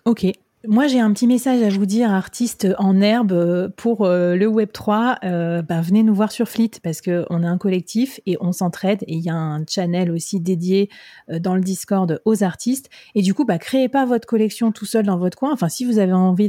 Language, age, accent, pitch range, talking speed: French, 30-49, French, 180-220 Hz, 235 wpm